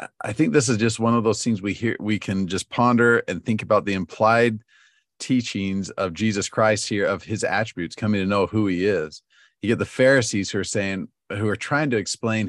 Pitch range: 90-115 Hz